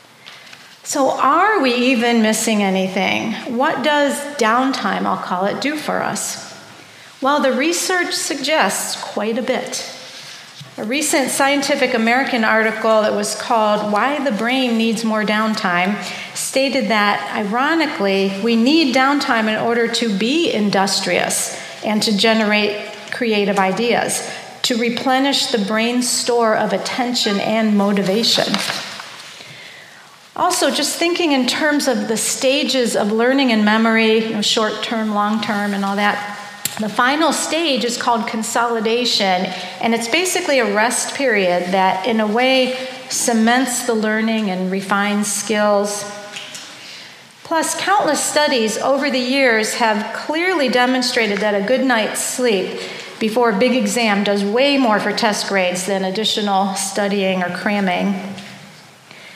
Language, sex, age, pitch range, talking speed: English, female, 40-59, 210-260 Hz, 130 wpm